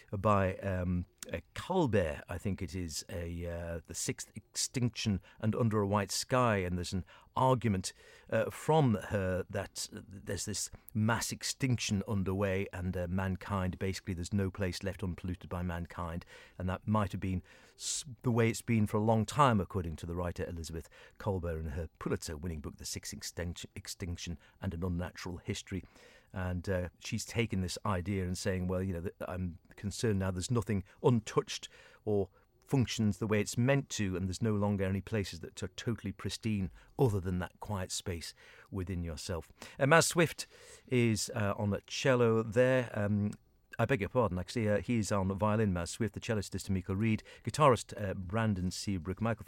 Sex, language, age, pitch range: male, English, 50-69, 90-110 Hz